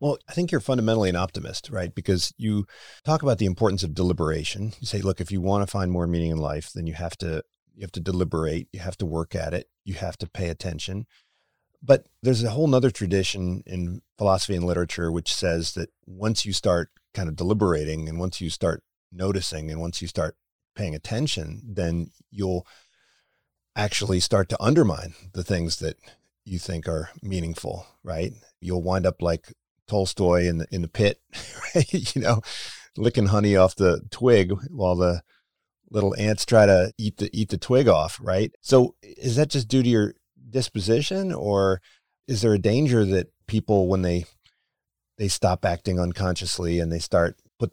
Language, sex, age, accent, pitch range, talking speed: English, male, 40-59, American, 85-105 Hz, 185 wpm